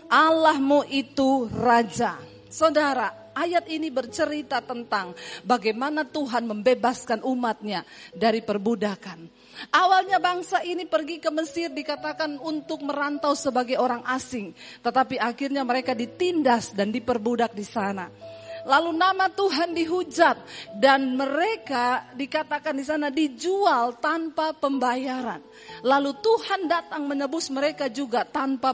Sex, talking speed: female, 110 wpm